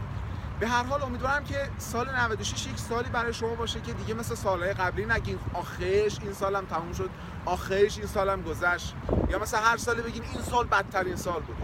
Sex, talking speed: male, 205 wpm